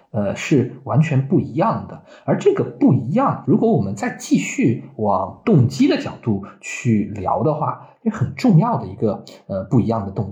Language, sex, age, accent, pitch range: Chinese, male, 20-39, native, 105-170 Hz